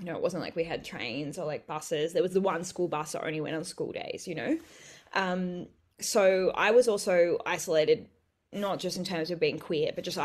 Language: English